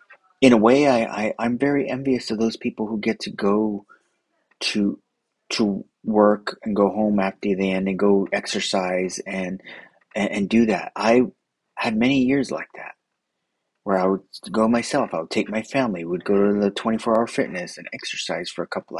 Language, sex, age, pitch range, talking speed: English, male, 30-49, 100-125 Hz, 185 wpm